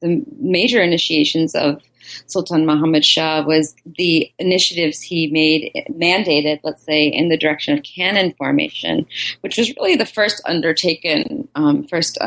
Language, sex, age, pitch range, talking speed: English, female, 30-49, 155-210 Hz, 140 wpm